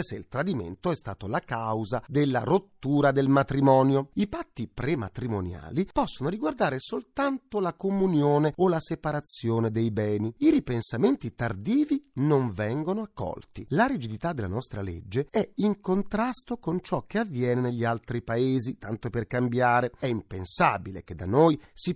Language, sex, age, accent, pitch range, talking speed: Italian, male, 40-59, native, 115-185 Hz, 150 wpm